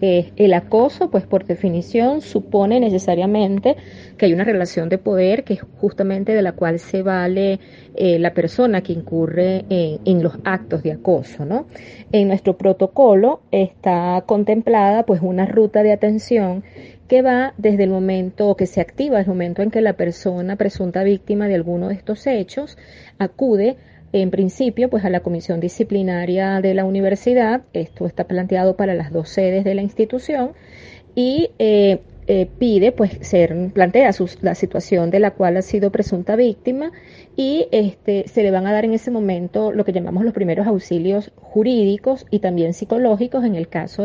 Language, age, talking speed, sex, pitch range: Spanish, 30-49, 170 wpm, female, 180-215 Hz